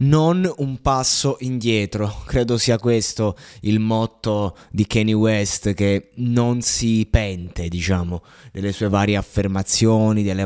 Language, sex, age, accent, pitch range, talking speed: Italian, male, 20-39, native, 100-125 Hz, 125 wpm